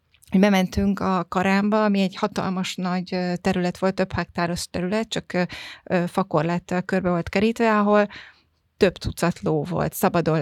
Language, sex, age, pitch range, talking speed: Hungarian, female, 30-49, 175-205 Hz, 145 wpm